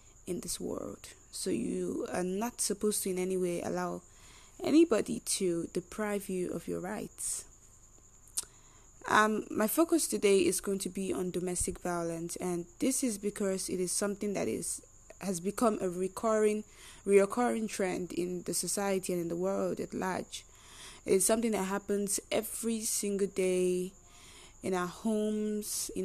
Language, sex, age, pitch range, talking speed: English, female, 20-39, 180-210 Hz, 150 wpm